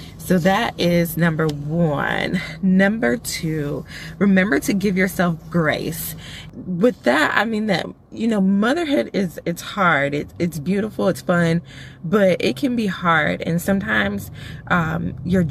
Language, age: English, 20-39